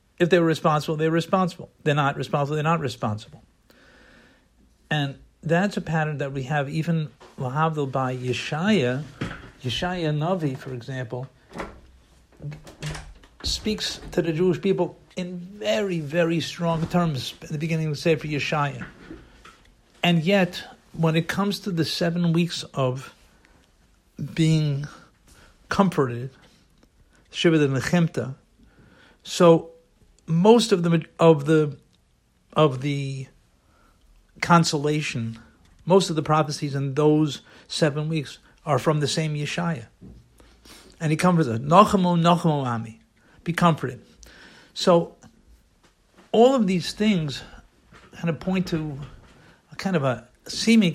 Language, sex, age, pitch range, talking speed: English, male, 50-69, 135-170 Hz, 120 wpm